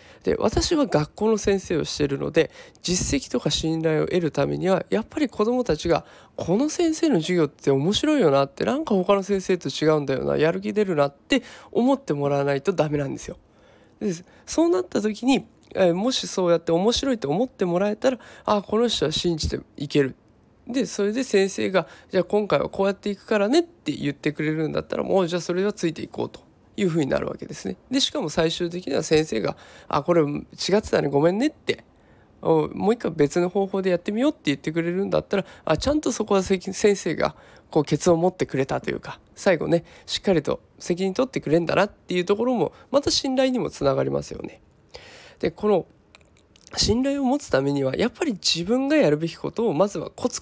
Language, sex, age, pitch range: Japanese, male, 20-39, 155-225 Hz